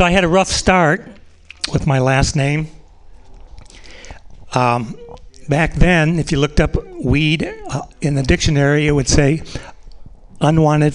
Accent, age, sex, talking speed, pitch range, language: American, 60-79, male, 140 wpm, 125-160 Hz, English